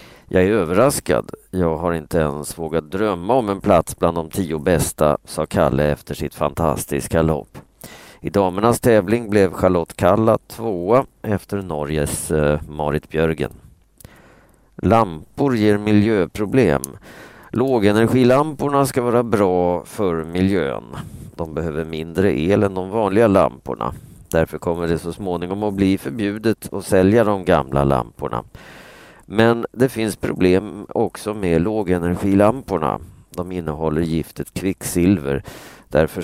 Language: Swedish